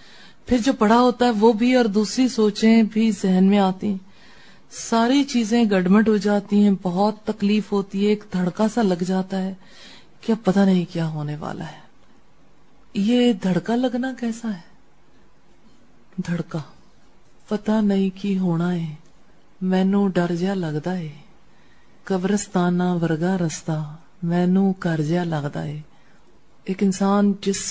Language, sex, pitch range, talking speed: English, female, 175-210 Hz, 135 wpm